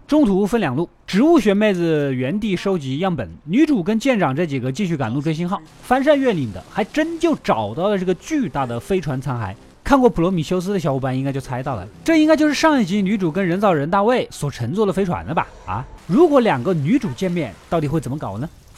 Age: 20-39